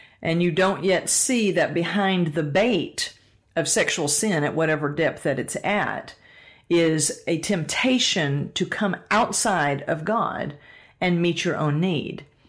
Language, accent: English, American